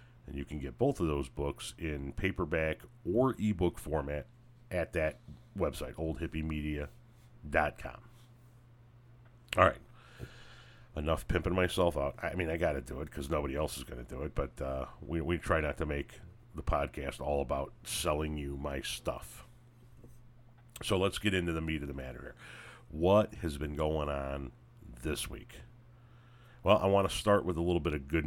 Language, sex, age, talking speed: English, male, 40-59, 175 wpm